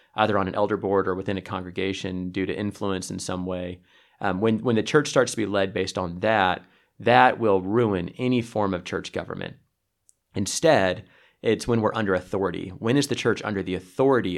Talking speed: 200 wpm